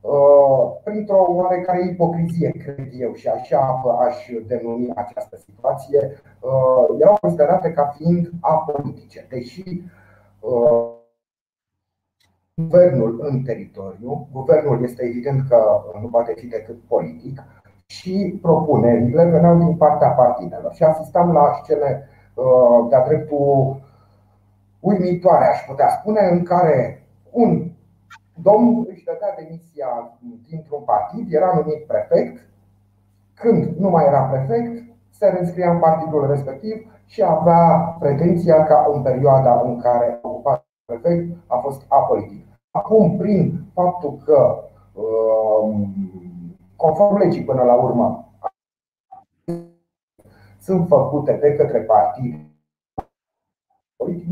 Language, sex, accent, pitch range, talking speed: Romanian, male, native, 120-170 Hz, 105 wpm